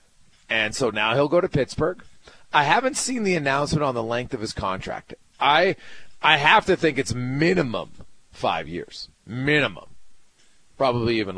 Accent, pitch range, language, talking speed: American, 120-175 Hz, English, 160 wpm